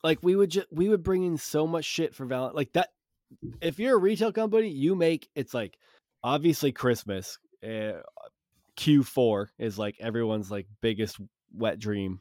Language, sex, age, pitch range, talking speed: English, male, 20-39, 105-145 Hz, 170 wpm